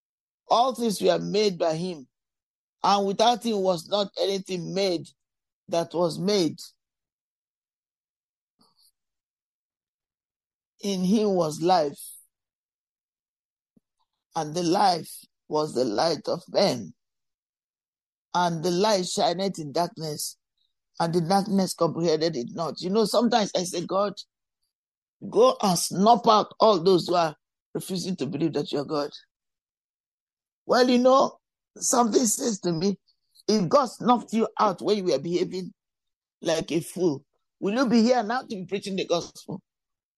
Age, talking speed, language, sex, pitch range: 50-69, 135 wpm, English, male, 175-225 Hz